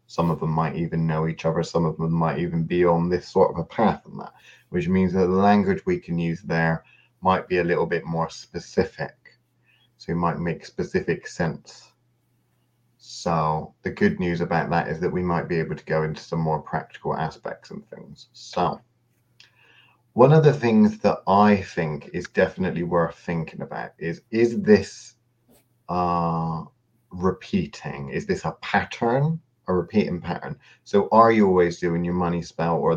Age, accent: 30-49, British